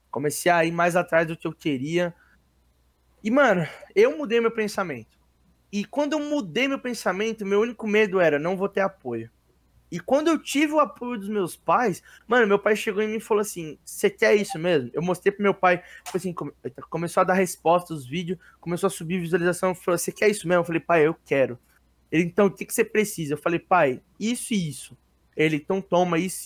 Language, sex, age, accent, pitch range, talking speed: Portuguese, male, 20-39, Brazilian, 165-210 Hz, 215 wpm